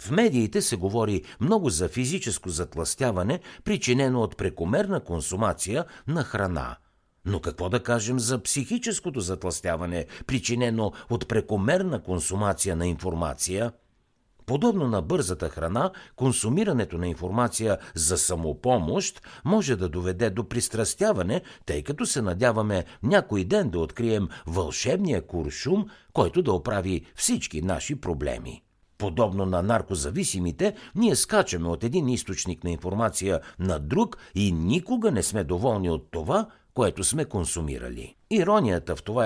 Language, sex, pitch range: Bulgarian, male, 85-125 Hz